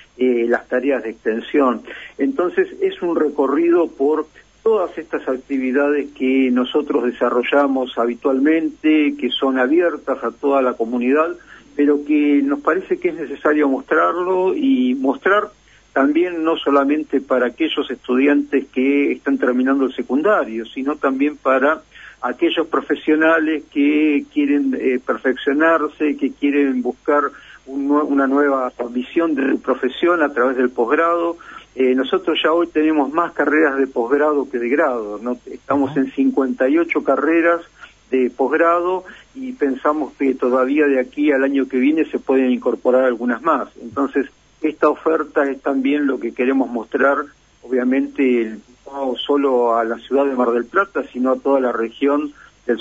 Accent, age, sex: Argentinian, 70-89, male